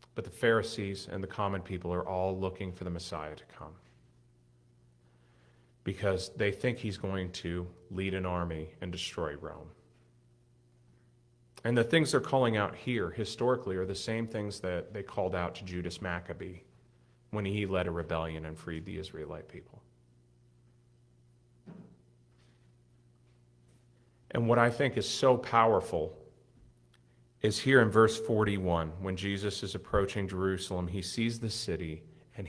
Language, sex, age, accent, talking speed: English, male, 40-59, American, 145 wpm